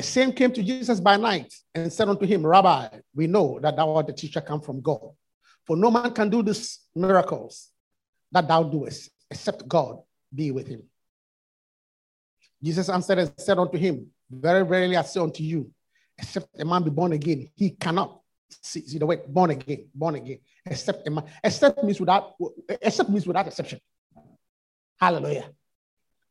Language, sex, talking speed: English, male, 175 wpm